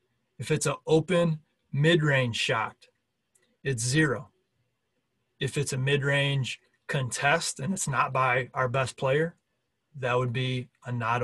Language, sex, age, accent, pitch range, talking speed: English, male, 30-49, American, 125-140 Hz, 135 wpm